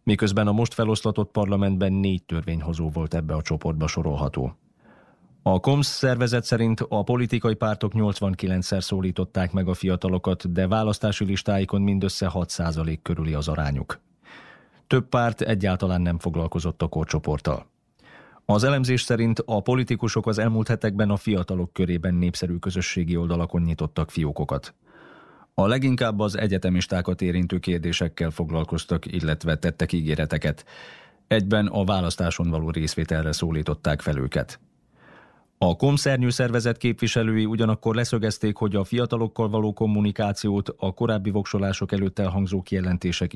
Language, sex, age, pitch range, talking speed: Hungarian, male, 30-49, 85-110 Hz, 125 wpm